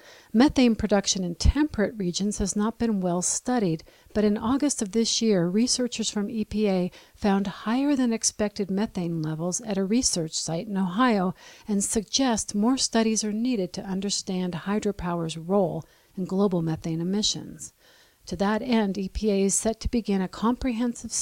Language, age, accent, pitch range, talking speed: English, 50-69, American, 180-230 Hz, 155 wpm